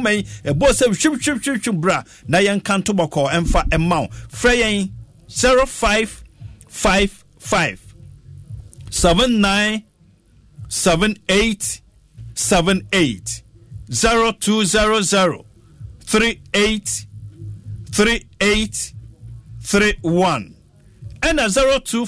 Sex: male